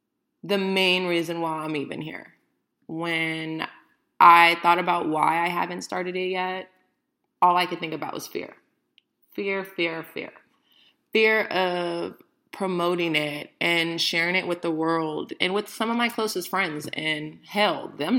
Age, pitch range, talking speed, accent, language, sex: 20-39, 160-245 Hz, 155 wpm, American, English, female